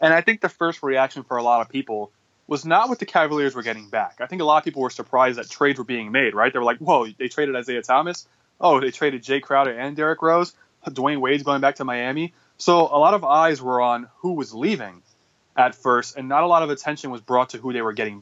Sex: male